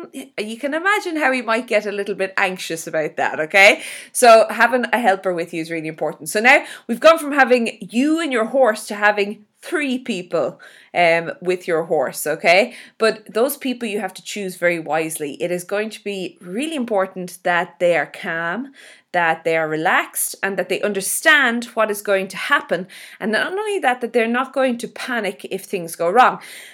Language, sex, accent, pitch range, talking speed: English, female, Irish, 180-255 Hz, 200 wpm